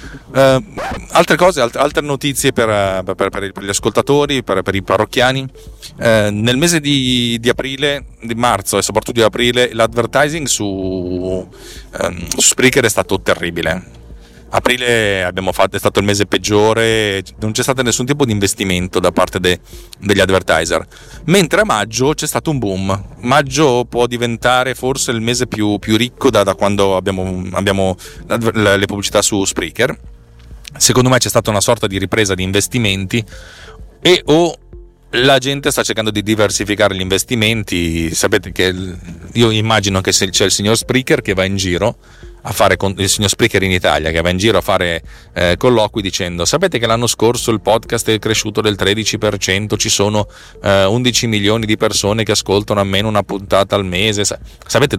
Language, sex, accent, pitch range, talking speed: Italian, male, native, 95-120 Hz, 170 wpm